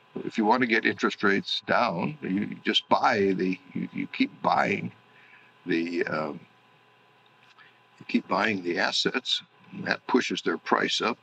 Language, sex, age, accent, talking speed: English, male, 60-79, American, 155 wpm